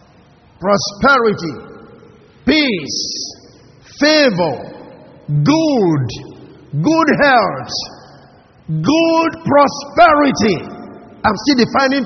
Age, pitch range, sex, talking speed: 50-69, 210-280 Hz, male, 55 wpm